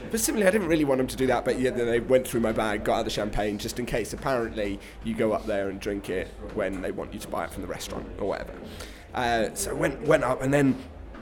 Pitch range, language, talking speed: 115-150 Hz, English, 285 wpm